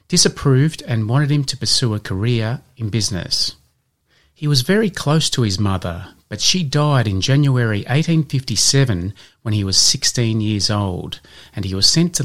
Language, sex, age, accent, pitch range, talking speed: English, male, 30-49, Australian, 100-140 Hz, 165 wpm